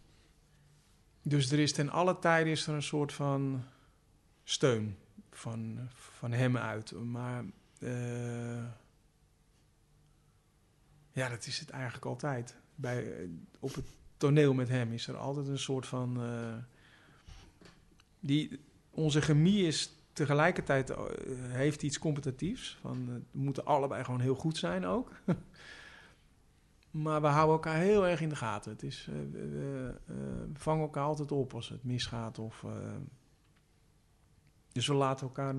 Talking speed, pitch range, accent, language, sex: 145 wpm, 120-150 Hz, Dutch, Dutch, male